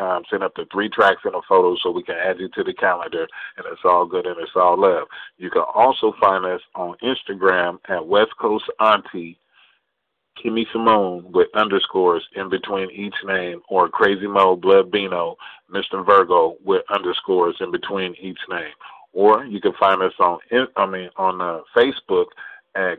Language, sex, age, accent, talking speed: English, male, 40-59, American, 180 wpm